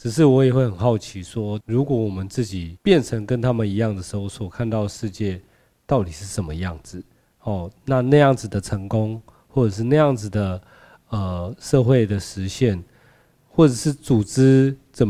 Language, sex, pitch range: Chinese, male, 100-130 Hz